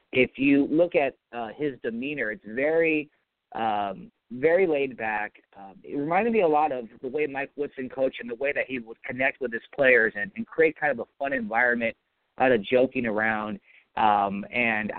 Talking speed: 195 wpm